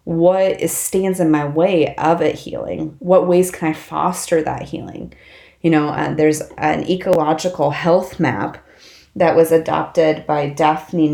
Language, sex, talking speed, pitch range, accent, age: English, female, 150 wpm, 150-180 Hz, American, 30-49